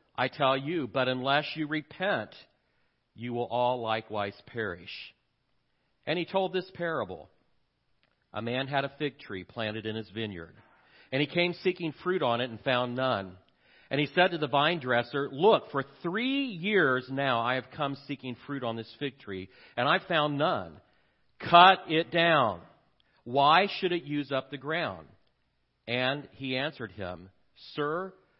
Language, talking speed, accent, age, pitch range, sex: English, 165 wpm, American, 50-69, 115-150 Hz, male